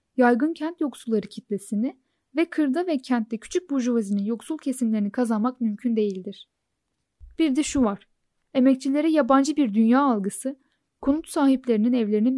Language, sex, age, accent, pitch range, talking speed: Turkish, female, 10-29, native, 225-280 Hz, 130 wpm